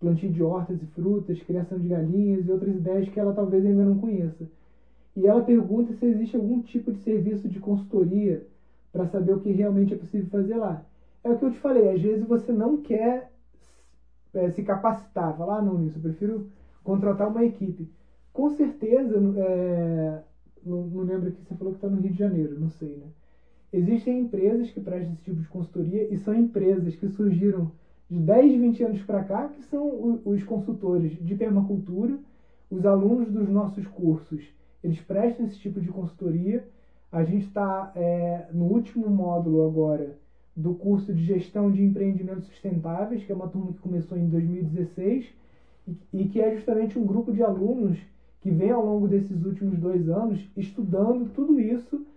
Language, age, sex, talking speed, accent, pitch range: Portuguese, 20-39, male, 180 wpm, Brazilian, 175-220 Hz